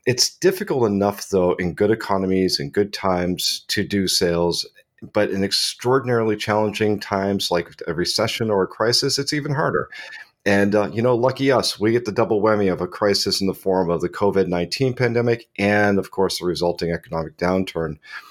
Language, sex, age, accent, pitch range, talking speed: English, male, 40-59, American, 90-110 Hz, 180 wpm